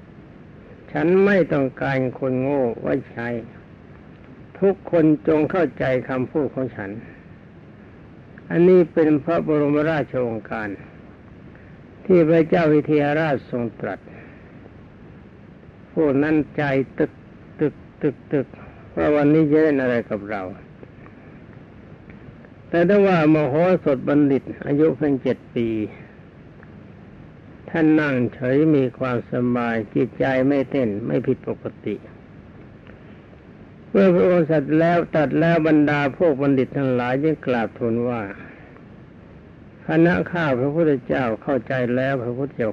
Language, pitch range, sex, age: Thai, 125-155 Hz, male, 60-79